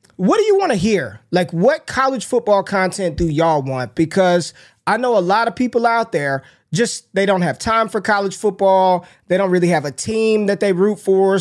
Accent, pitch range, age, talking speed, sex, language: American, 170-215 Hz, 20-39, 215 wpm, male, English